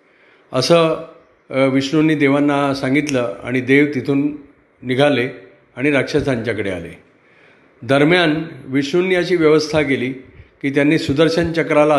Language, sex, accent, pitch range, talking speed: Marathi, male, native, 130-155 Hz, 100 wpm